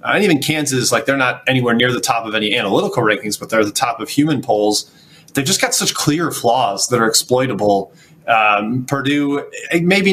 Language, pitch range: English, 125-155 Hz